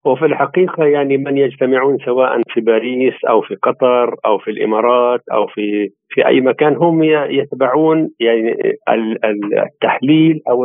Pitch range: 135-165 Hz